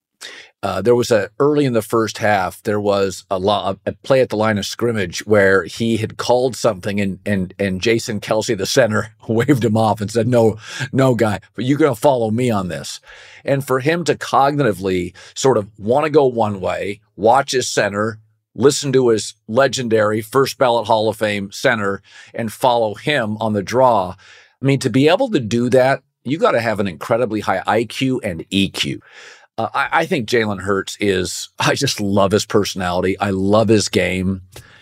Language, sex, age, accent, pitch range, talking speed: English, male, 50-69, American, 105-125 Hz, 195 wpm